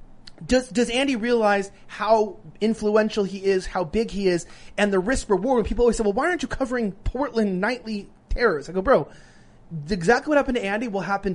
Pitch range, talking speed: 185-235 Hz, 200 wpm